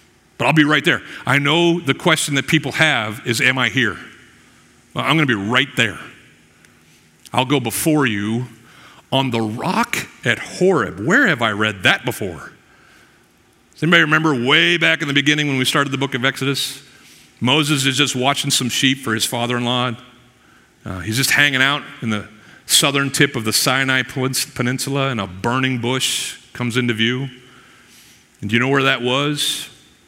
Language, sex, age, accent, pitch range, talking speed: English, male, 50-69, American, 110-135 Hz, 175 wpm